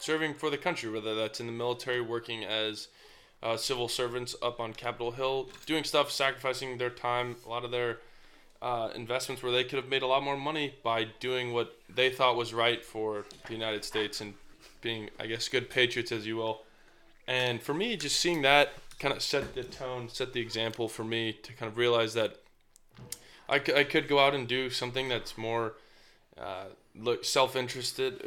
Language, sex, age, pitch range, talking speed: English, male, 20-39, 115-135 Hz, 195 wpm